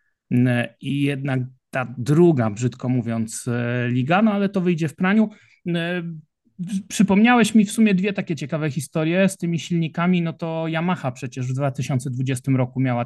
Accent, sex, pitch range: native, male, 140-160 Hz